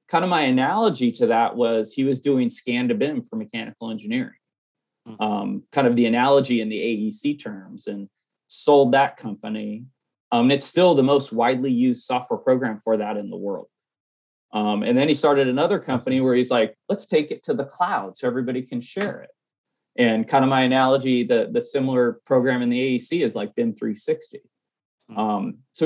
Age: 30-49